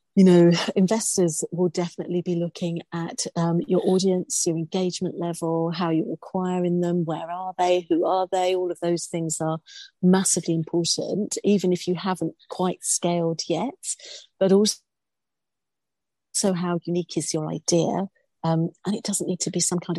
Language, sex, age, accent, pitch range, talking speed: English, female, 40-59, British, 170-190 Hz, 160 wpm